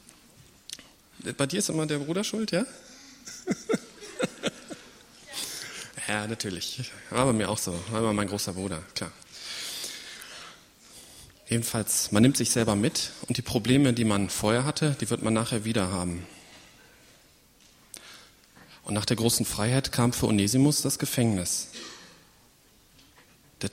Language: German